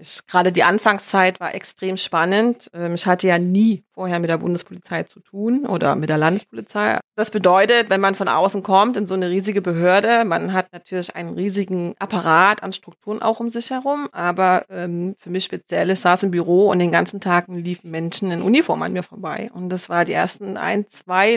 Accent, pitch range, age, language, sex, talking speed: German, 180-220 Hz, 30-49, German, female, 200 wpm